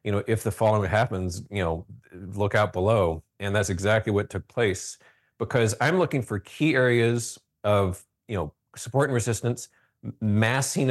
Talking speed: 165 wpm